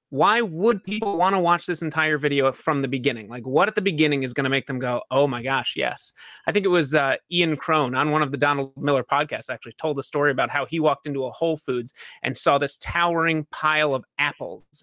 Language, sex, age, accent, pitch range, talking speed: English, male, 30-49, American, 135-180 Hz, 245 wpm